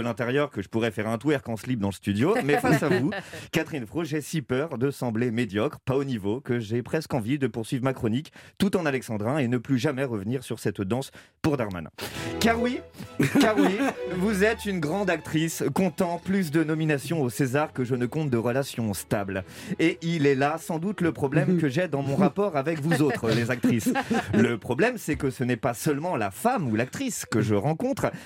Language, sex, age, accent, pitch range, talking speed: French, male, 30-49, French, 120-165 Hz, 220 wpm